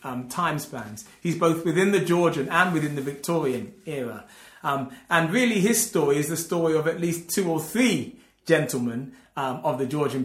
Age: 30-49